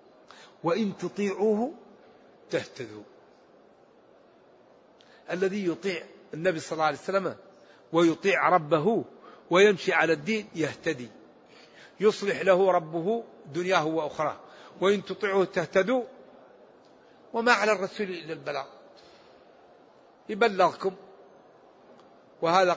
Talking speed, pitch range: 80 wpm, 180-210 Hz